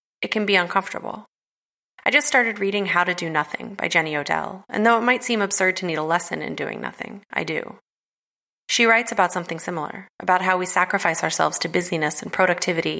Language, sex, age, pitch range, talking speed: English, female, 30-49, 165-200 Hz, 205 wpm